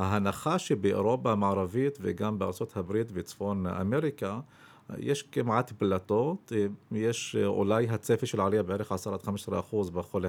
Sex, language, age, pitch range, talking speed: male, Hebrew, 50-69, 100-120 Hz, 105 wpm